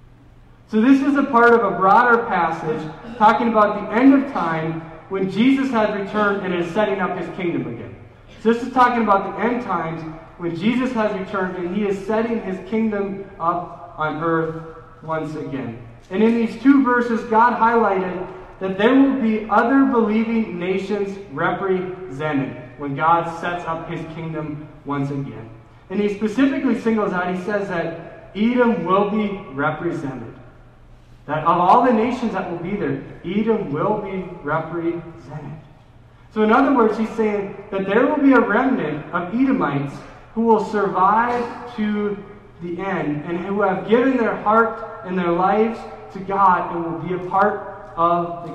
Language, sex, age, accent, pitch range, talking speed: English, male, 30-49, American, 160-225 Hz, 165 wpm